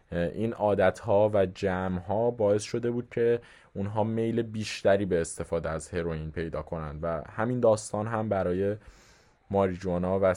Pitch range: 85-110 Hz